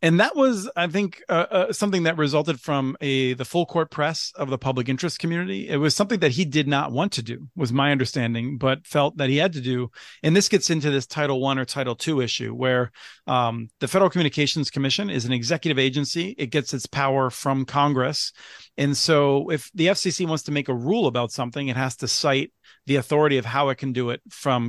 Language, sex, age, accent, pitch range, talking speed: English, male, 40-59, American, 130-150 Hz, 225 wpm